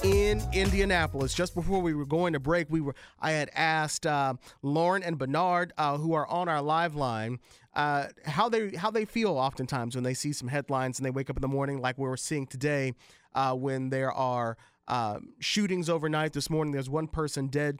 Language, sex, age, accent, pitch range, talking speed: English, male, 40-59, American, 135-165 Hz, 205 wpm